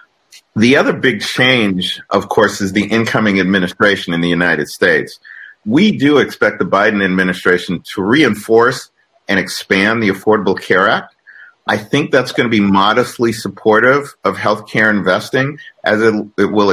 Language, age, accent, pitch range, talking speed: English, 50-69, American, 95-110 Hz, 155 wpm